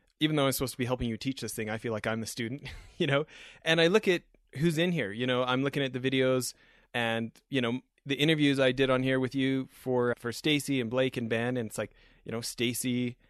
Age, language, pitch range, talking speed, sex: 30-49, English, 115-130 Hz, 255 wpm, male